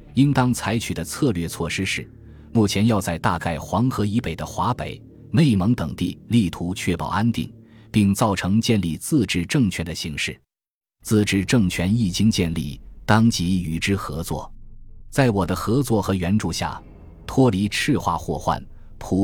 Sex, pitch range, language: male, 85-115 Hz, Chinese